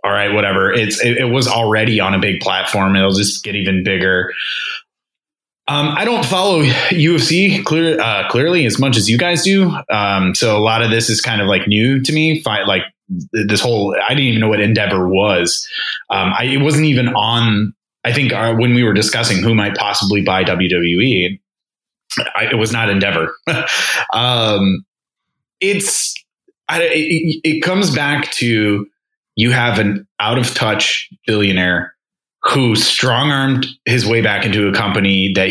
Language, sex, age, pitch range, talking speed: English, male, 20-39, 100-135 Hz, 160 wpm